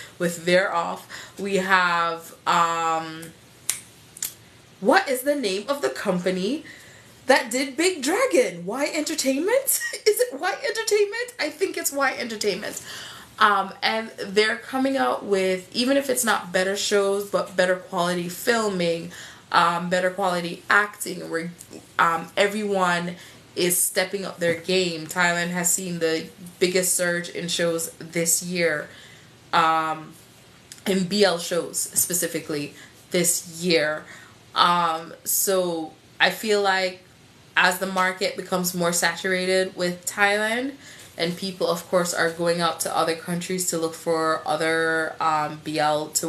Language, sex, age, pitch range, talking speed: English, female, 20-39, 165-200 Hz, 135 wpm